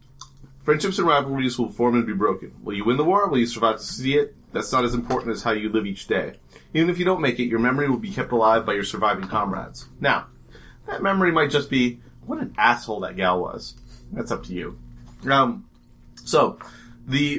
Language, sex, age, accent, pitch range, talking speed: English, male, 30-49, American, 110-145 Hz, 220 wpm